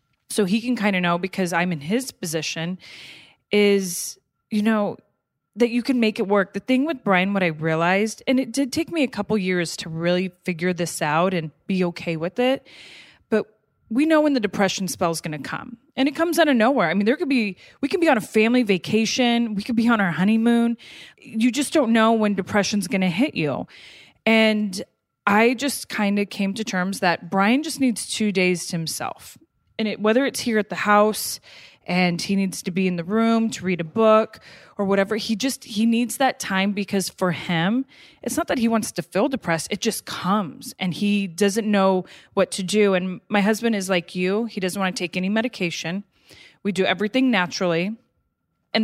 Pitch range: 185-230 Hz